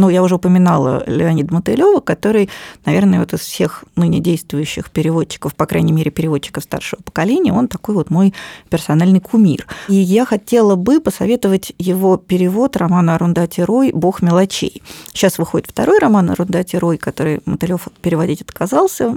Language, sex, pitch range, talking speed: Russian, female, 170-225 Hz, 150 wpm